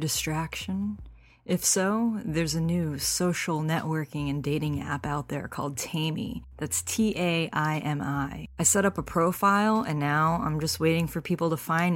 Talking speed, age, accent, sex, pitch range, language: 165 wpm, 20-39, American, female, 145-175 Hz, English